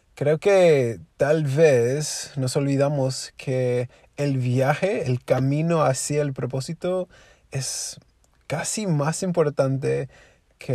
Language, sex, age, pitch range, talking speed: Spanish, male, 20-39, 125-150 Hz, 105 wpm